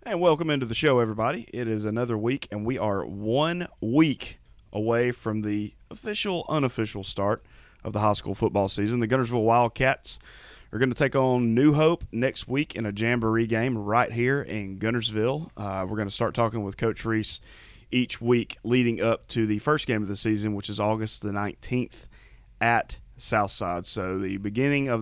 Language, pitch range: English, 105-120 Hz